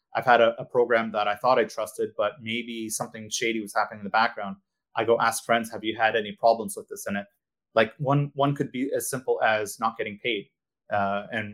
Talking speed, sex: 235 wpm, male